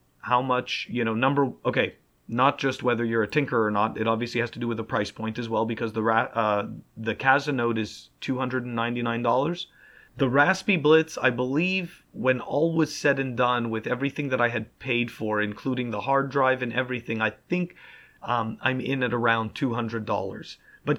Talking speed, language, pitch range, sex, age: 210 wpm, English, 110-135 Hz, male, 30-49